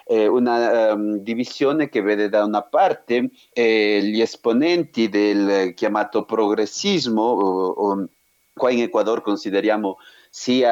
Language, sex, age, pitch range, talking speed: Italian, male, 40-59, 105-140 Hz, 125 wpm